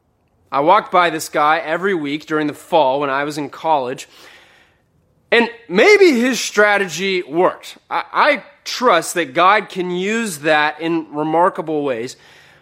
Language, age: English, 20-39